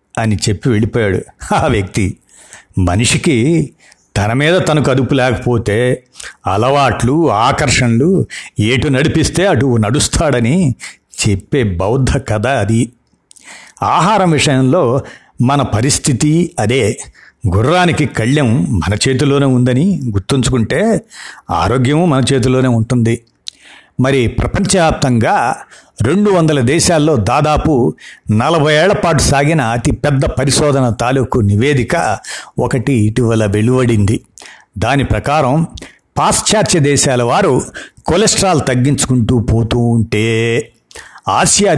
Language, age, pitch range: Telugu, 60-79, 115-150 Hz